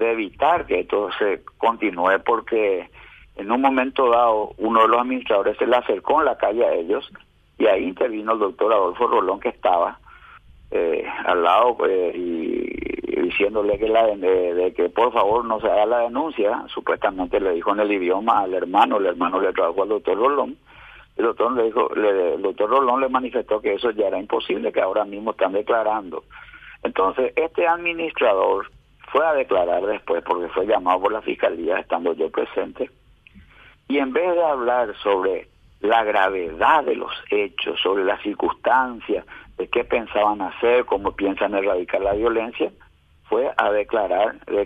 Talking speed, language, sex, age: 175 wpm, Spanish, male, 50-69